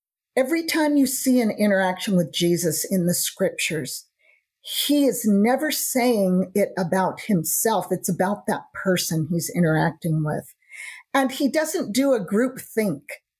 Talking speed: 145 wpm